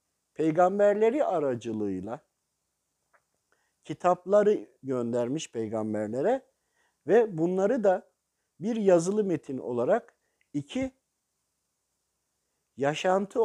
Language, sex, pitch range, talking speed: Turkish, male, 130-200 Hz, 60 wpm